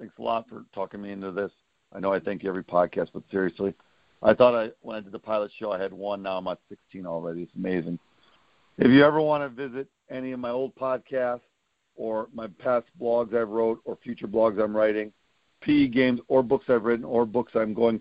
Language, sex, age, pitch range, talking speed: English, male, 50-69, 110-140 Hz, 225 wpm